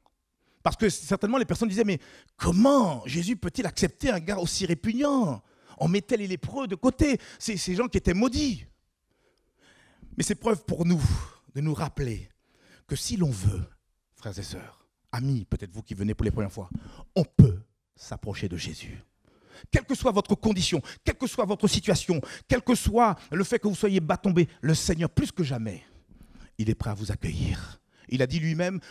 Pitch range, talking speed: 130-210 Hz, 190 wpm